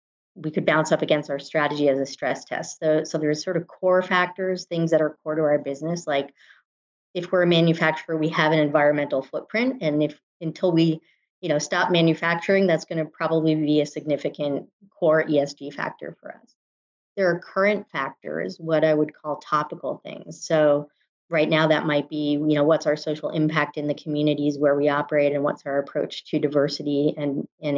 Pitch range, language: 145-170 Hz, English